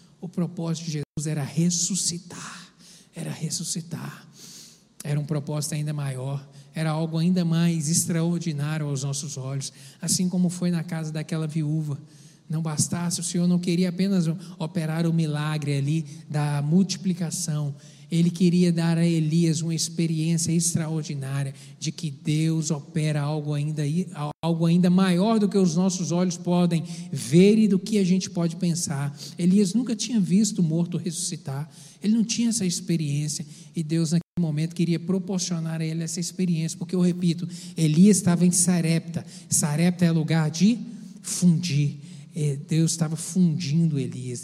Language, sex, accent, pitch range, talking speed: Portuguese, male, Brazilian, 155-180 Hz, 145 wpm